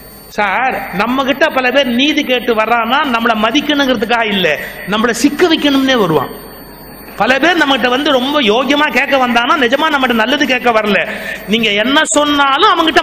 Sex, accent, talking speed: male, native, 150 wpm